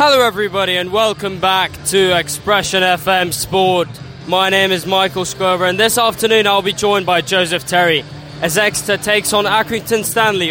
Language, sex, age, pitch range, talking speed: English, male, 10-29, 170-205 Hz, 165 wpm